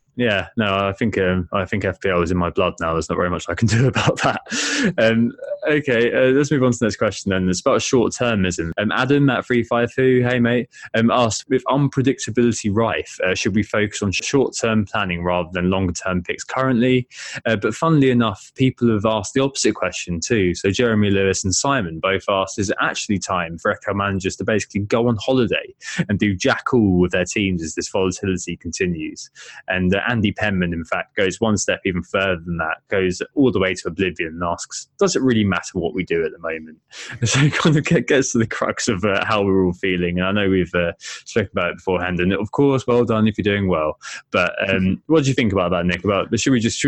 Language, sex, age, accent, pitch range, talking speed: English, male, 20-39, British, 90-120 Hz, 230 wpm